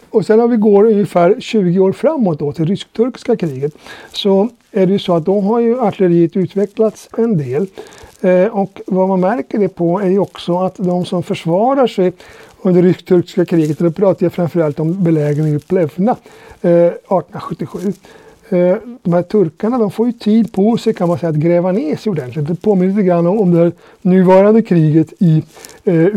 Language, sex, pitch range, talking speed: Swedish, male, 170-205 Hz, 190 wpm